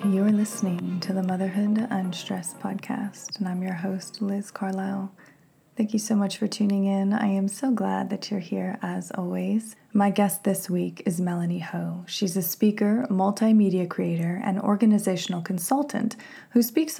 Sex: female